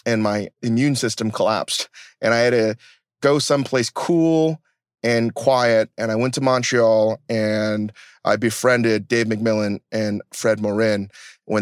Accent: American